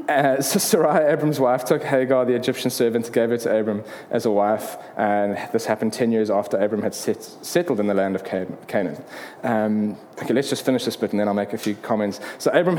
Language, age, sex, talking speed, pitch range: English, 20-39, male, 220 wpm, 115-180 Hz